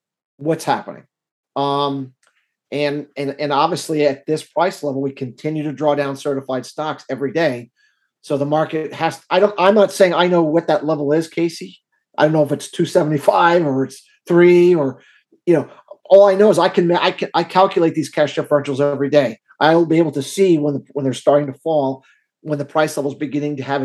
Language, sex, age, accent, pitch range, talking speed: English, male, 40-59, American, 145-175 Hz, 205 wpm